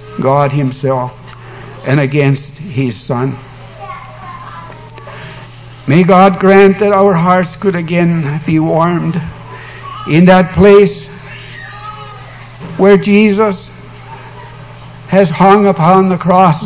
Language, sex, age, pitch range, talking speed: English, male, 60-79, 140-185 Hz, 95 wpm